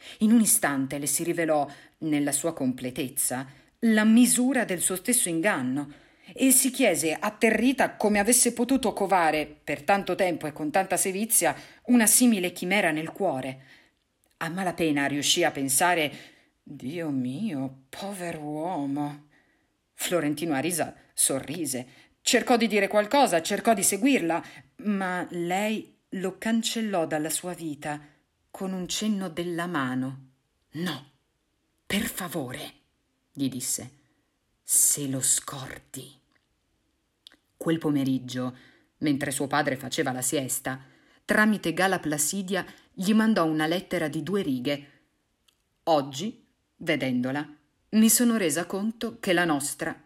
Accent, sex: native, female